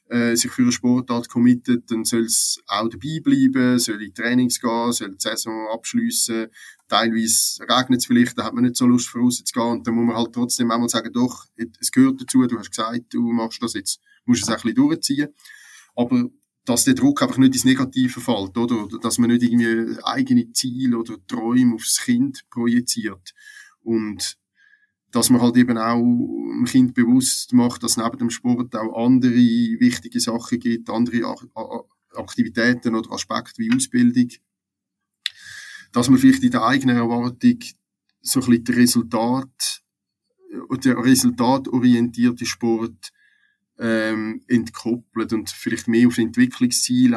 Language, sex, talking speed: German, male, 160 wpm